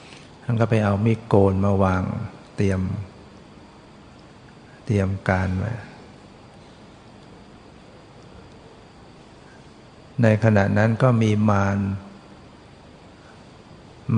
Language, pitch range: Thai, 100-115 Hz